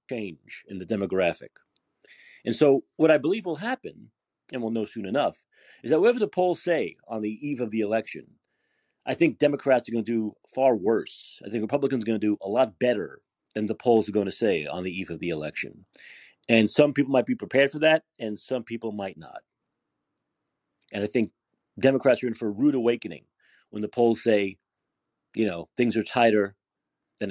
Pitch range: 100-130 Hz